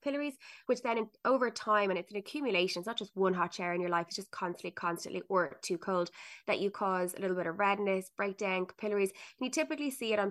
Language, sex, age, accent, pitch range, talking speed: English, female, 20-39, Irish, 185-225 Hz, 235 wpm